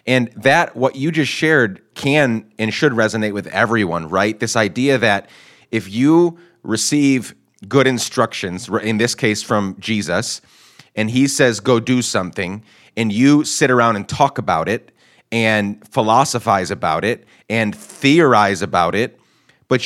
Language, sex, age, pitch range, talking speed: English, male, 30-49, 105-135 Hz, 150 wpm